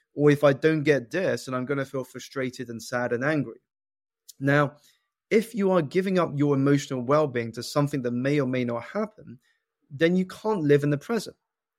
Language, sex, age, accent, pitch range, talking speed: English, male, 20-39, British, 125-155 Hz, 205 wpm